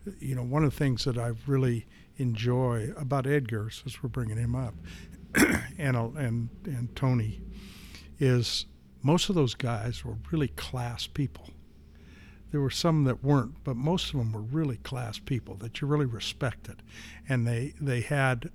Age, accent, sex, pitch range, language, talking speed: 60-79, American, male, 115-130 Hz, English, 165 wpm